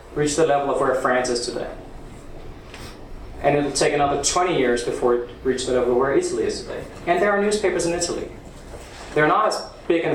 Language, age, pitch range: English, 30-49, 135-185 Hz